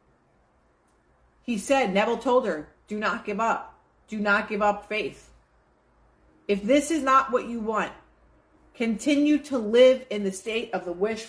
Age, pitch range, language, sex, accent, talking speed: 30-49, 200-265 Hz, English, female, American, 160 wpm